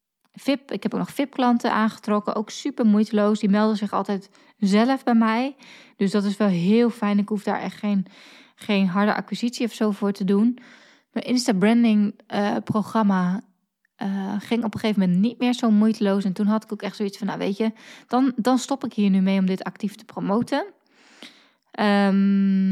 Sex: female